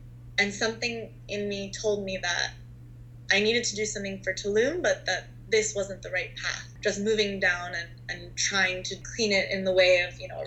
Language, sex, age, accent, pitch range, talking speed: English, female, 20-39, American, 125-195 Hz, 205 wpm